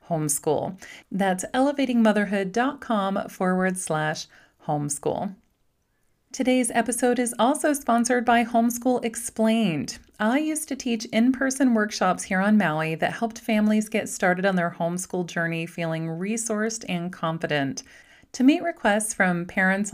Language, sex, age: English, female, 30-49